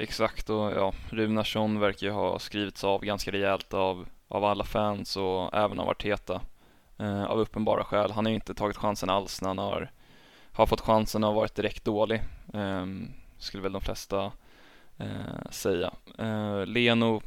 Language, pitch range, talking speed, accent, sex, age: Swedish, 100-110 Hz, 170 wpm, native, male, 20-39